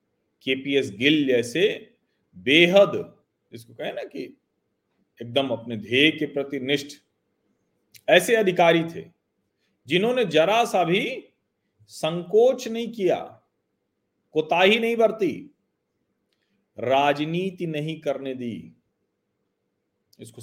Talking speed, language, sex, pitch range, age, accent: 90 wpm, Hindi, male, 140-185 Hz, 40-59, native